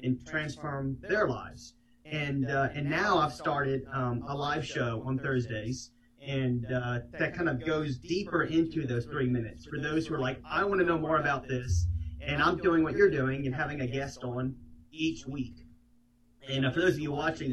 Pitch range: 125-155 Hz